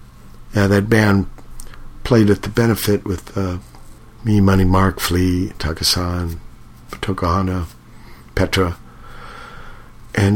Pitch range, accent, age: 85-105 Hz, American, 50-69